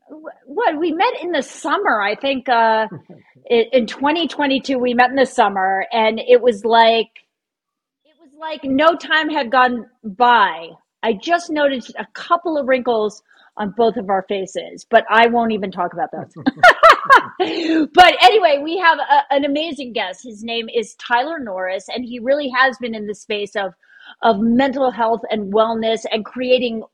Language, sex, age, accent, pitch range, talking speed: English, female, 40-59, American, 225-295 Hz, 165 wpm